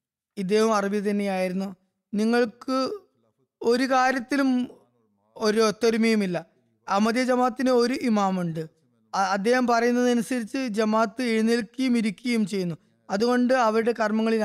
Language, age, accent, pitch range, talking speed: Malayalam, 20-39, native, 195-235 Hz, 85 wpm